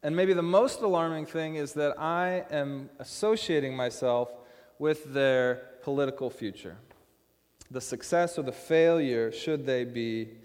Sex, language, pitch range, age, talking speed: male, English, 120-150 Hz, 30-49, 140 wpm